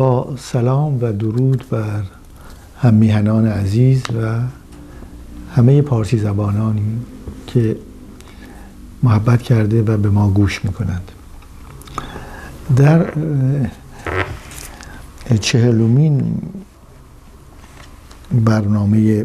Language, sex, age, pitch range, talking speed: Persian, male, 60-79, 100-130 Hz, 70 wpm